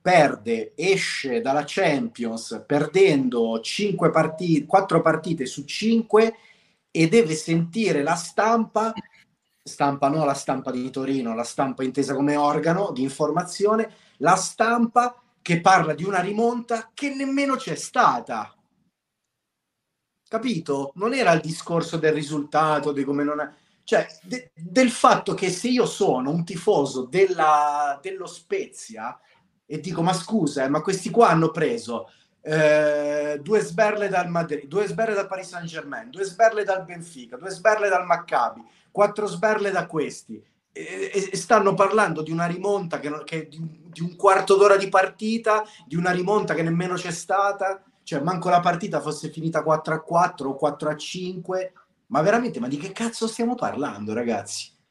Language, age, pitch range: Italian, 30-49, 155-215 Hz